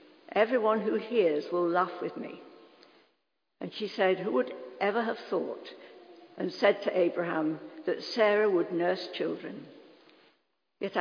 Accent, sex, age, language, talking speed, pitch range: British, female, 60-79, English, 135 wpm, 180-285 Hz